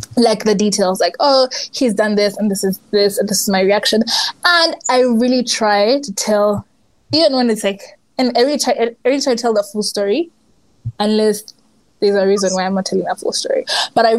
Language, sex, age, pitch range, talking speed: English, female, 20-39, 215-265 Hz, 235 wpm